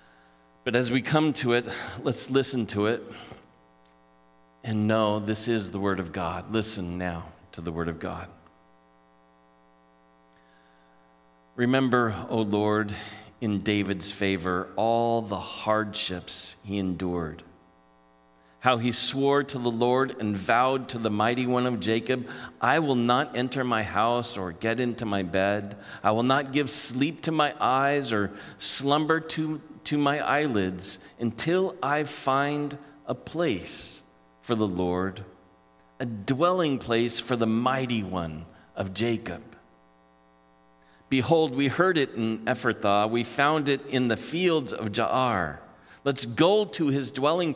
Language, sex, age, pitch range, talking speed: English, male, 40-59, 85-135 Hz, 140 wpm